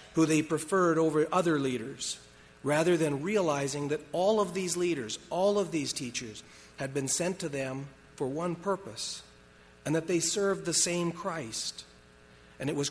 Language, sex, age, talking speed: English, male, 40-59, 165 wpm